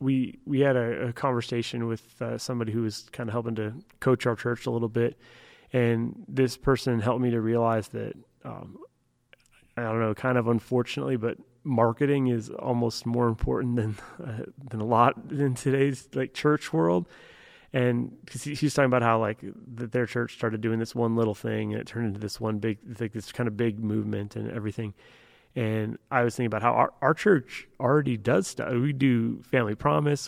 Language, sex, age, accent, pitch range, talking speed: English, male, 30-49, American, 110-130 Hz, 195 wpm